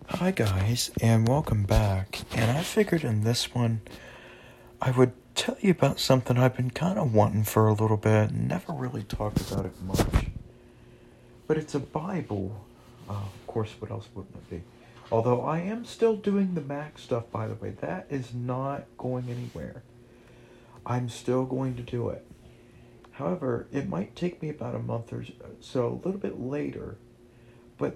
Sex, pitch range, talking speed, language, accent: male, 115-140 Hz, 175 wpm, English, American